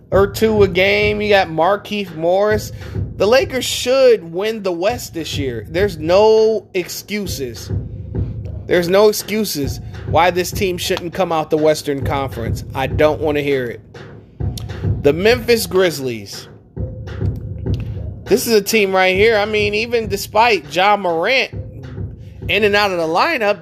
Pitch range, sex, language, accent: 115-185 Hz, male, English, American